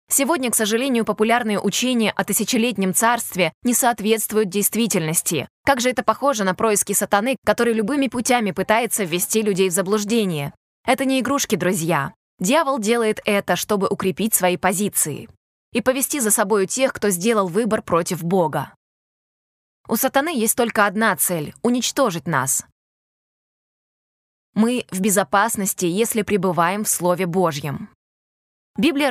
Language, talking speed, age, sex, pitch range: Russian, 130 wpm, 20-39, female, 190-235 Hz